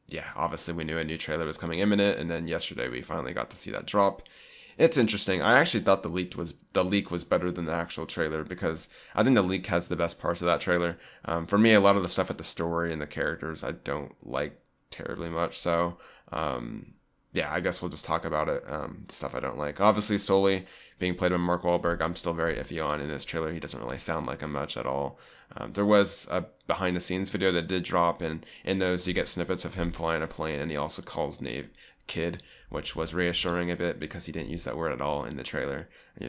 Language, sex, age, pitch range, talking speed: English, male, 20-39, 80-95 Hz, 245 wpm